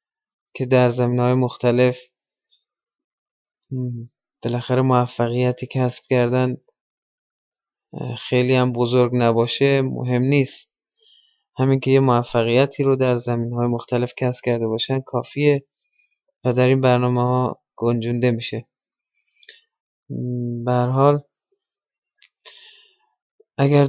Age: 20-39